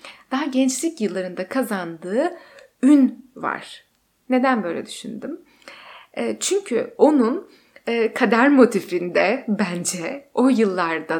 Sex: female